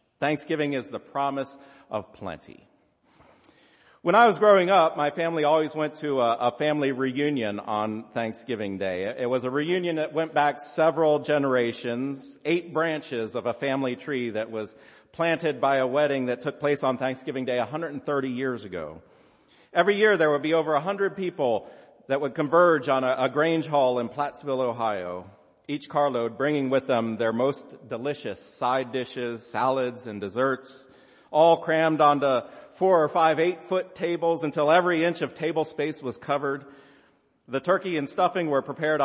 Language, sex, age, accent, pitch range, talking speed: English, male, 40-59, American, 125-155 Hz, 165 wpm